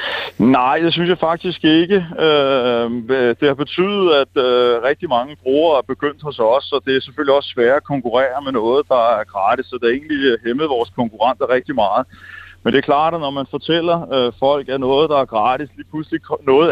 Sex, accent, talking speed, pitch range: male, native, 205 wpm, 120-155 Hz